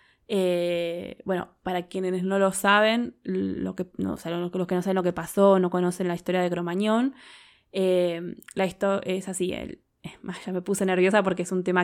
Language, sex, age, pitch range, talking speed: Spanish, female, 20-39, 185-210 Hz, 215 wpm